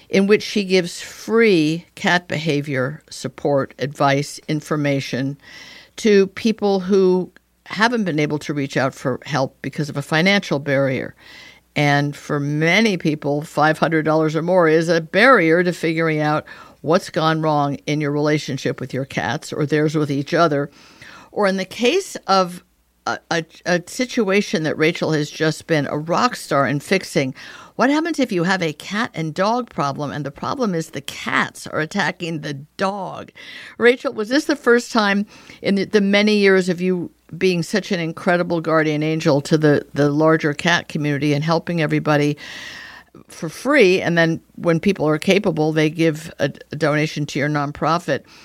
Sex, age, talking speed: female, 50-69, 165 wpm